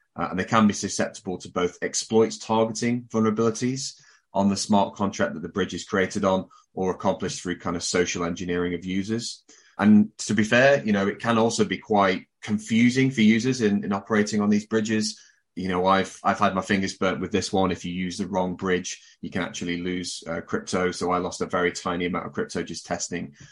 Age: 30-49